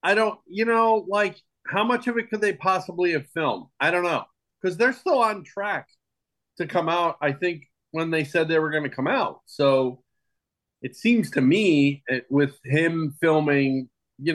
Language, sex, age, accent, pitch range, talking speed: English, male, 40-59, American, 120-160 Hz, 190 wpm